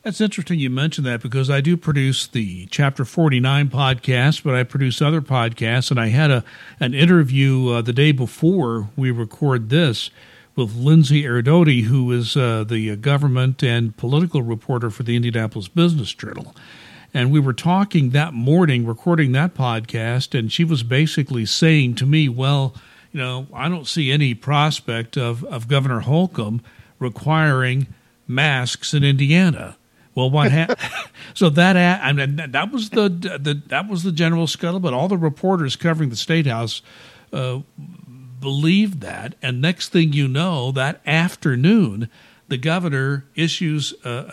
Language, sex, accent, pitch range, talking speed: English, male, American, 125-160 Hz, 160 wpm